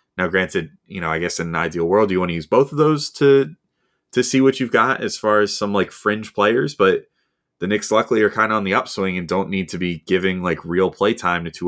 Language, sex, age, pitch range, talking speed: English, male, 20-39, 80-100 Hz, 265 wpm